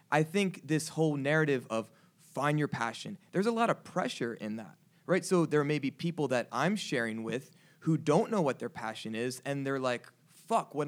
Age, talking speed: 20-39, 210 wpm